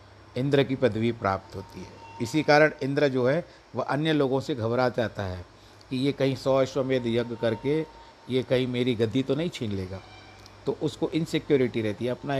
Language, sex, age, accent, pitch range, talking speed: Hindi, male, 60-79, native, 110-135 Hz, 195 wpm